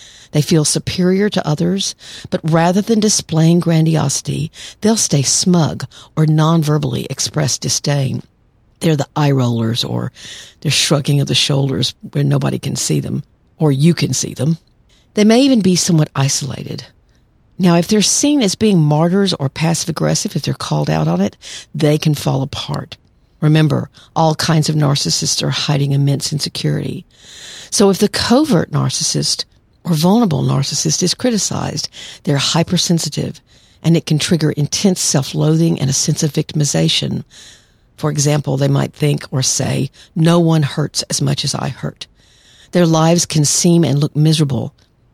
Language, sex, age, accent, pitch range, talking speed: English, female, 50-69, American, 135-165 Hz, 155 wpm